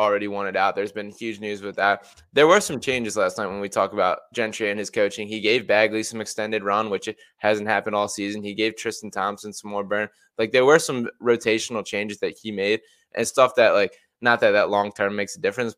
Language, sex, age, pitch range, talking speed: English, male, 20-39, 105-125 Hz, 235 wpm